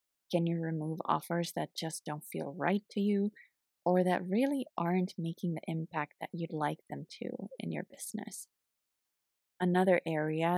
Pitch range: 155-190 Hz